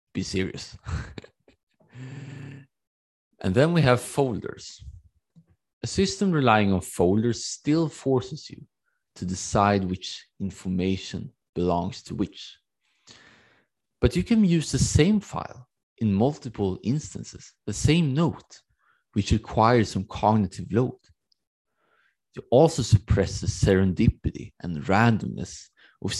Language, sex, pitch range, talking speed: English, male, 95-130 Hz, 110 wpm